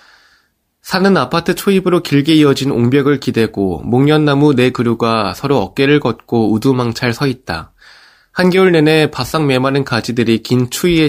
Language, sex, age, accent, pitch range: Korean, male, 20-39, native, 115-155 Hz